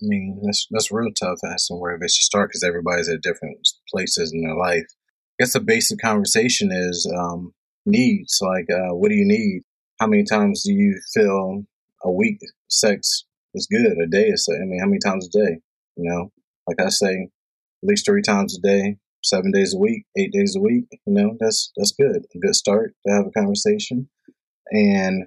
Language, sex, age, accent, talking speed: English, male, 30-49, American, 205 wpm